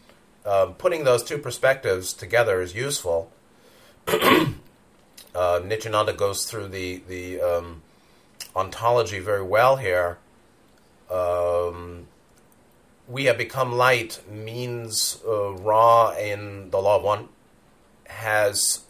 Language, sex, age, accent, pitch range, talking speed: English, male, 30-49, American, 95-125 Hz, 105 wpm